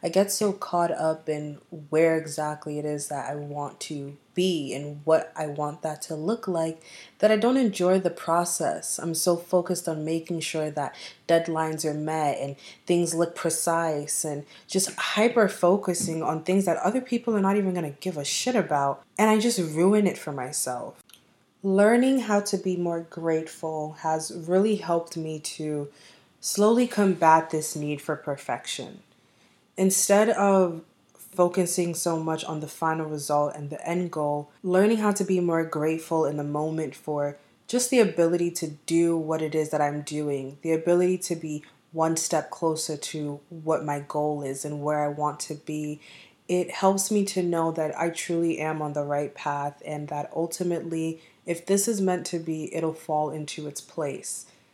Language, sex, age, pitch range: English, female, 20-39, 150-180 Hz